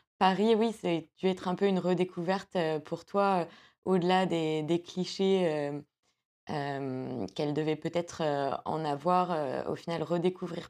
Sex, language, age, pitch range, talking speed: female, French, 20-39, 155-190 Hz, 145 wpm